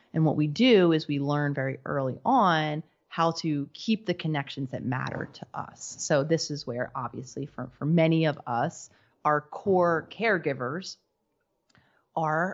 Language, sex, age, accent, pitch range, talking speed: English, female, 30-49, American, 135-165 Hz, 160 wpm